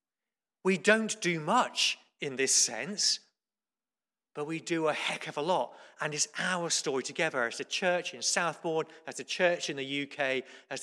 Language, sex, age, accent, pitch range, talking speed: English, male, 40-59, British, 135-175 Hz, 175 wpm